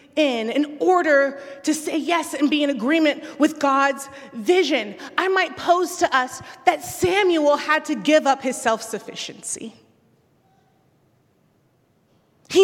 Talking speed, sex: 130 wpm, female